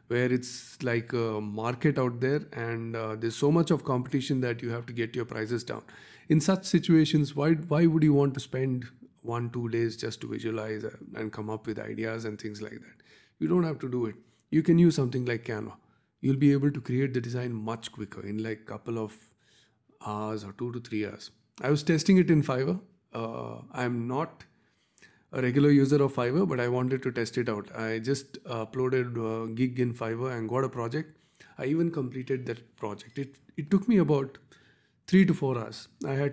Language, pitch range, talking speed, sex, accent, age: English, 115-140 Hz, 205 wpm, male, Indian, 30-49